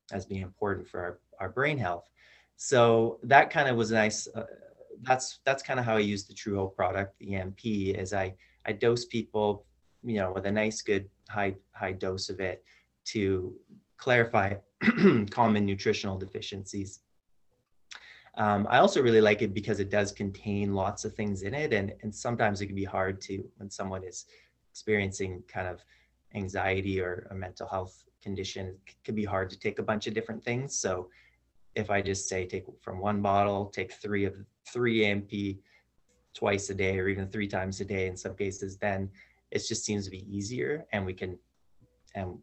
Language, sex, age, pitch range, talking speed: English, male, 30-49, 95-110 Hz, 190 wpm